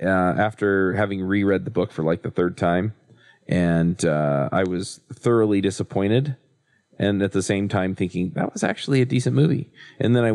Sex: male